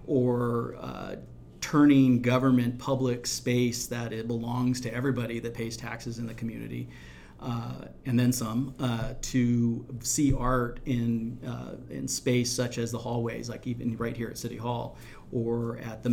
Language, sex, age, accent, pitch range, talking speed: English, male, 40-59, American, 115-125 Hz, 160 wpm